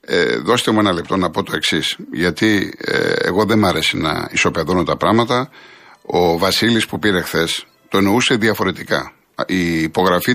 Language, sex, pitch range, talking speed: Greek, male, 100-125 Hz, 155 wpm